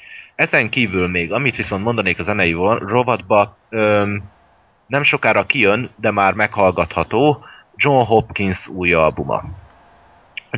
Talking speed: 120 wpm